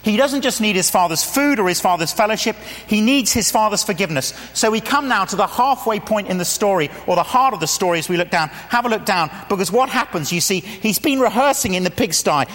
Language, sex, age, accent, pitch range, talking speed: English, male, 40-59, British, 155-240 Hz, 250 wpm